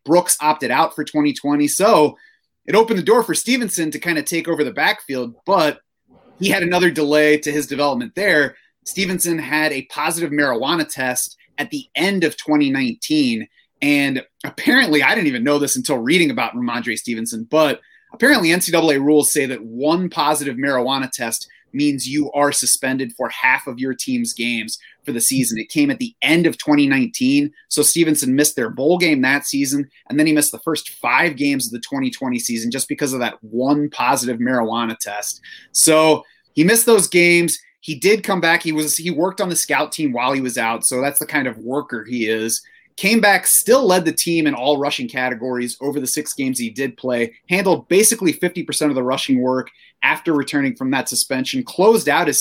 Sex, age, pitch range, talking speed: male, 30-49, 130-180 Hz, 195 wpm